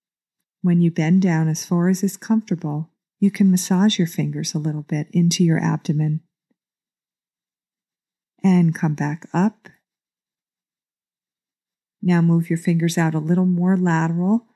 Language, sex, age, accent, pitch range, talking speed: English, female, 40-59, American, 160-185 Hz, 135 wpm